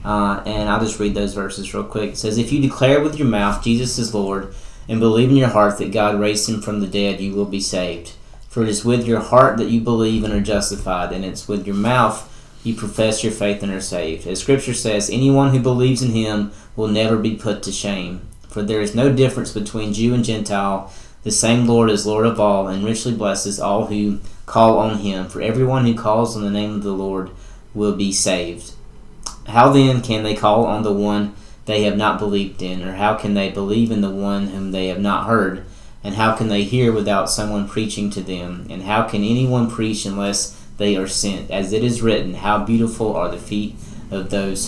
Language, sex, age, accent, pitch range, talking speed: English, male, 30-49, American, 100-115 Hz, 225 wpm